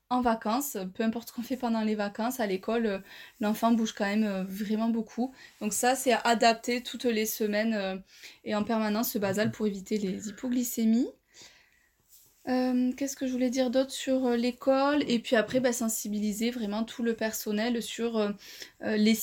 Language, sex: French, female